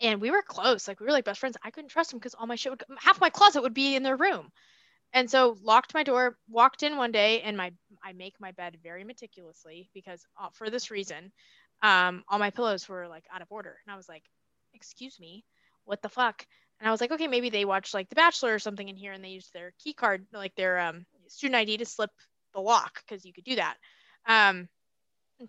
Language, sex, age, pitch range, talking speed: English, female, 10-29, 195-270 Hz, 245 wpm